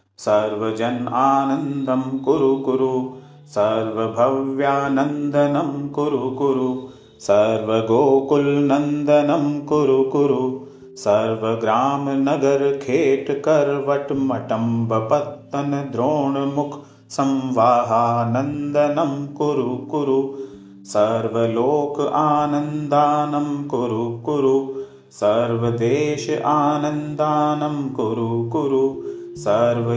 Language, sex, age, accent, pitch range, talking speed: Hindi, male, 30-49, native, 130-145 Hz, 40 wpm